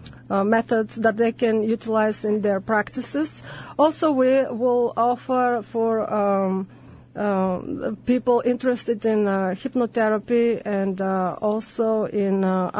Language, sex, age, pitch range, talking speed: English, female, 40-59, 200-230 Hz, 120 wpm